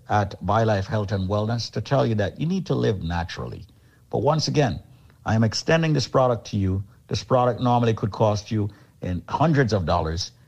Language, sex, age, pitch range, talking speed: English, male, 50-69, 100-125 Hz, 200 wpm